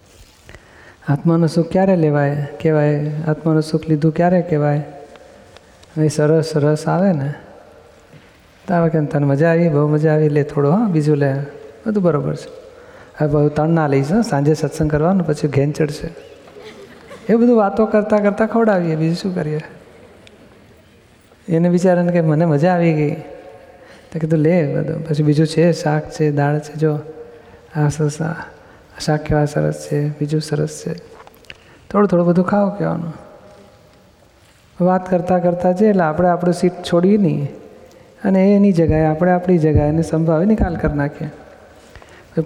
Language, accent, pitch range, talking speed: Gujarati, native, 150-175 Hz, 145 wpm